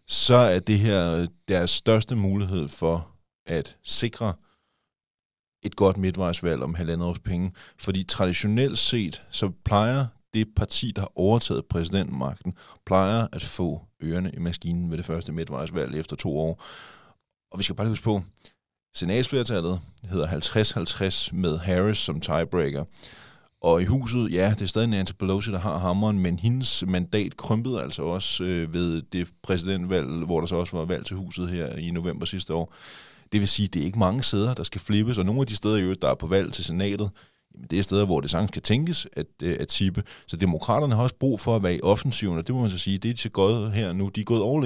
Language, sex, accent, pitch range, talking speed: Danish, male, native, 90-110 Hz, 200 wpm